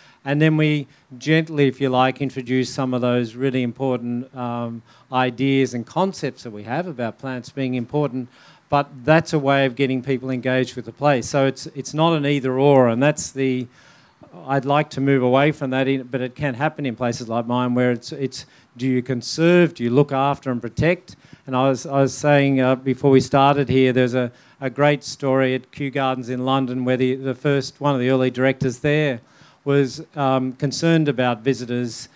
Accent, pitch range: Australian, 130-145 Hz